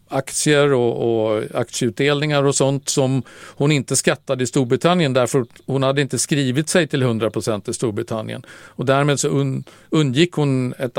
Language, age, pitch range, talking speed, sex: Swedish, 50-69, 120-145 Hz, 155 wpm, male